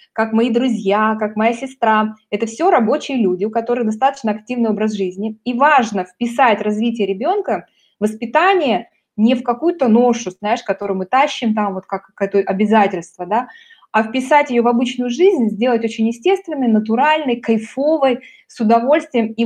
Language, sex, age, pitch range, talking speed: Russian, female, 20-39, 205-255 Hz, 155 wpm